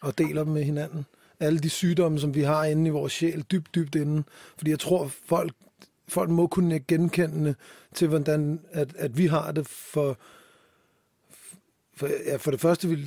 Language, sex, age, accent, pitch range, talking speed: Danish, male, 30-49, native, 145-165 Hz, 185 wpm